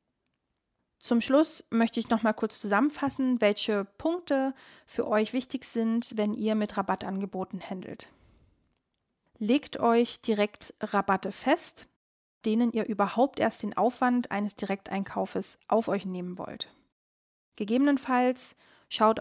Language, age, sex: German, 30-49, female